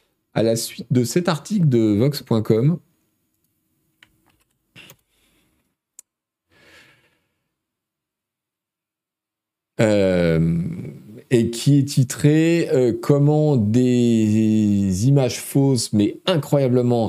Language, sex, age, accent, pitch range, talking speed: French, male, 40-59, French, 85-140 Hz, 65 wpm